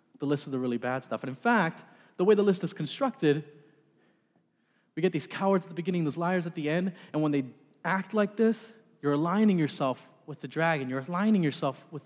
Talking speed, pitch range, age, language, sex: 220 wpm, 135-180 Hz, 30-49, English, male